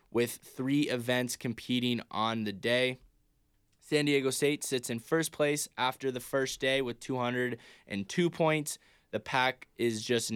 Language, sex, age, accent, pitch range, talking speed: English, male, 20-39, American, 115-135 Hz, 145 wpm